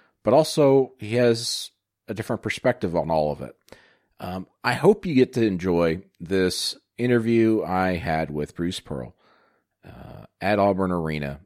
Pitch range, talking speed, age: 85-110 Hz, 150 wpm, 40-59